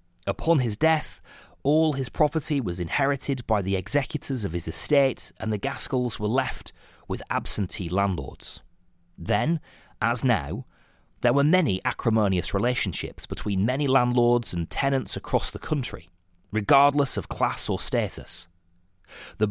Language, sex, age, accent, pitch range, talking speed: English, male, 30-49, British, 90-140 Hz, 135 wpm